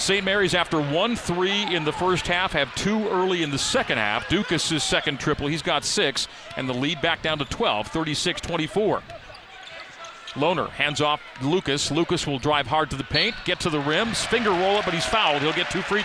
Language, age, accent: English, 40-59, American